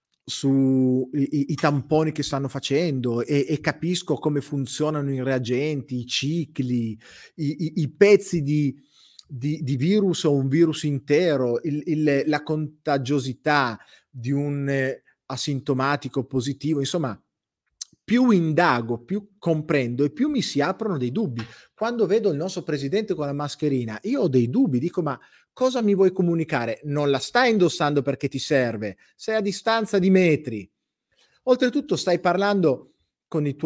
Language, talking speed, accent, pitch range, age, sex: Italian, 145 wpm, native, 130-170 Hz, 30-49, male